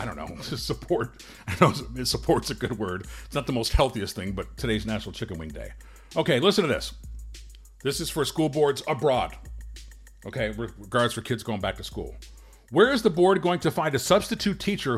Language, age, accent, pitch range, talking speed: English, 50-69, American, 125-195 Hz, 205 wpm